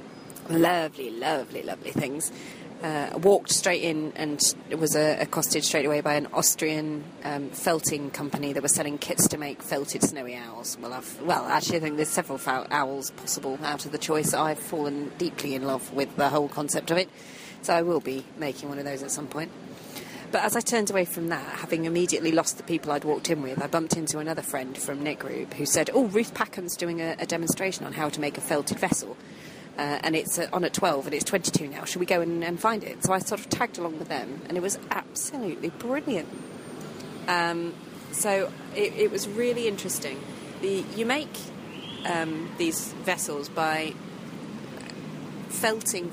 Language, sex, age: English, female, 30-49